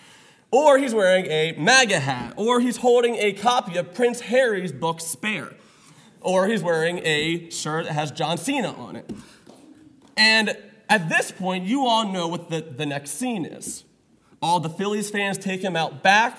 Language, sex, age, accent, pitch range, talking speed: English, male, 30-49, American, 155-215 Hz, 175 wpm